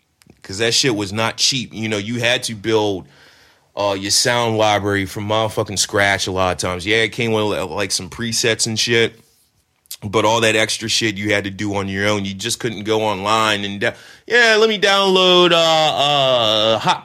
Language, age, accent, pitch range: English, 30-49, American, 105-140 Hz